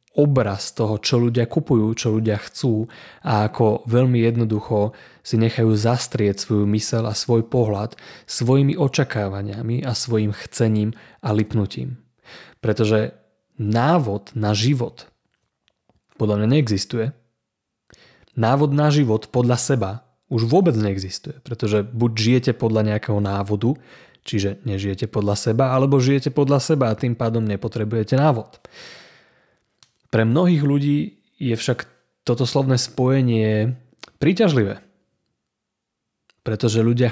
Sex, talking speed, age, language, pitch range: male, 115 wpm, 30-49, Slovak, 105-130 Hz